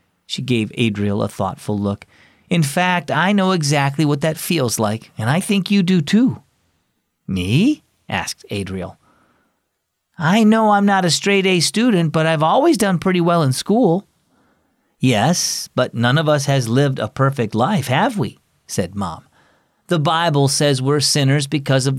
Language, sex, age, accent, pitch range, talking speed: English, male, 40-59, American, 130-180 Hz, 165 wpm